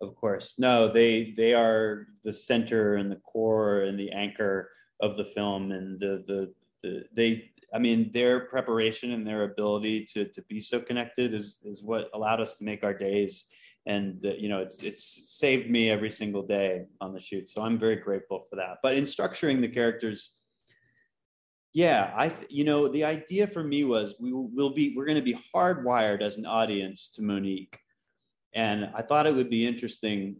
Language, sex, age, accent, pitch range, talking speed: English, male, 30-49, American, 100-120 Hz, 195 wpm